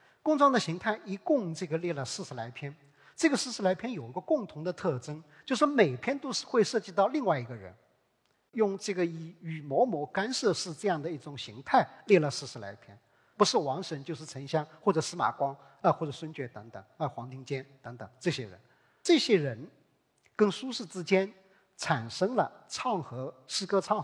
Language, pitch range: Chinese, 130-195 Hz